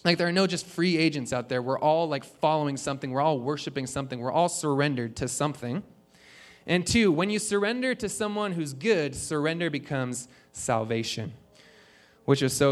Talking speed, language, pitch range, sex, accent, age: 180 wpm, English, 140-175 Hz, male, American, 20-39